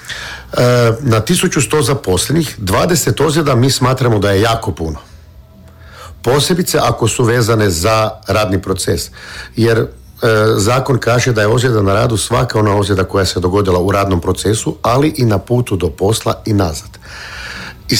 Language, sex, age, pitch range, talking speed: Croatian, male, 50-69, 95-120 Hz, 150 wpm